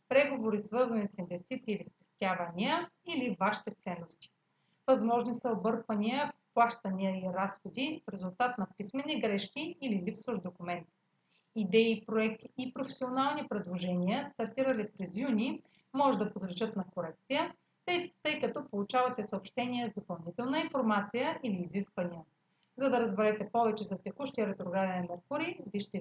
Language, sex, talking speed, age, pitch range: Bulgarian, female, 125 wpm, 40-59, 195-255 Hz